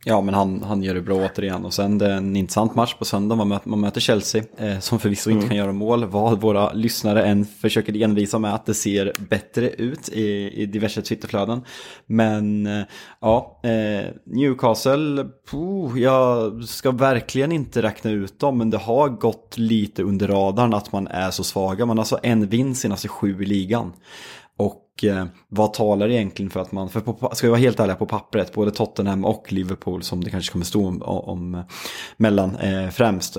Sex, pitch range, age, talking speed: male, 95-115 Hz, 20-39, 190 wpm